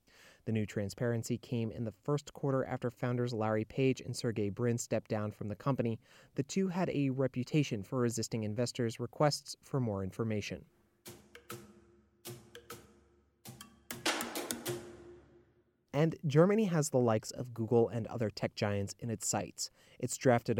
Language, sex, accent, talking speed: English, male, American, 140 wpm